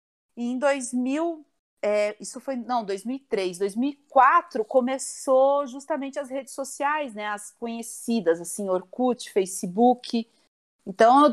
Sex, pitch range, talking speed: female, 200-265 Hz, 110 wpm